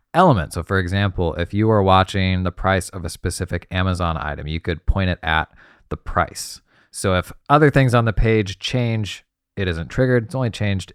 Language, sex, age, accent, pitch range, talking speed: English, male, 20-39, American, 90-130 Hz, 195 wpm